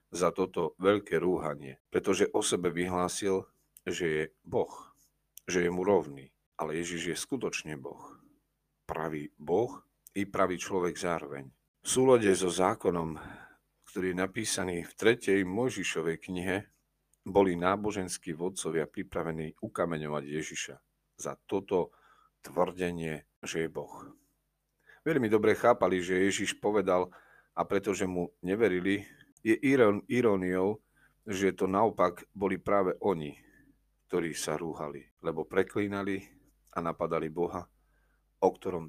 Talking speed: 120 wpm